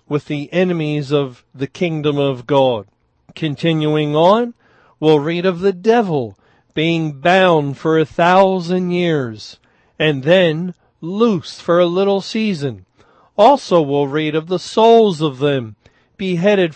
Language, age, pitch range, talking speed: English, 50-69, 140-175 Hz, 135 wpm